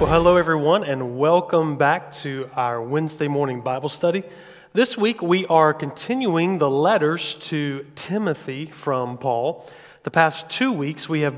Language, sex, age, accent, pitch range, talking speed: English, male, 30-49, American, 140-175 Hz, 155 wpm